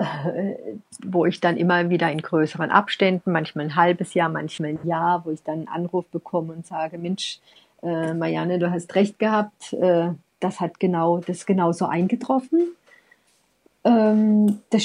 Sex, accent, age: female, German, 50-69